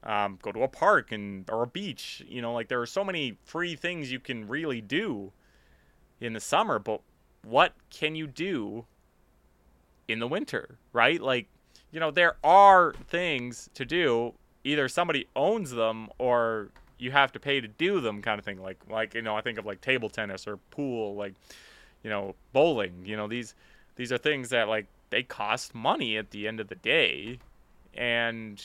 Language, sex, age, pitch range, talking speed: English, male, 30-49, 105-155 Hz, 190 wpm